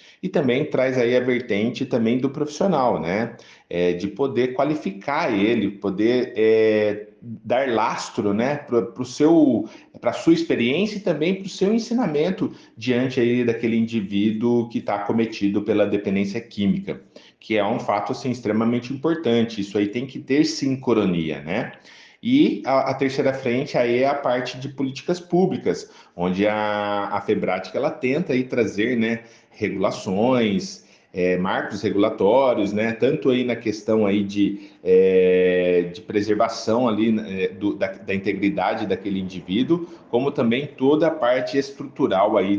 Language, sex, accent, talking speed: Portuguese, male, Brazilian, 145 wpm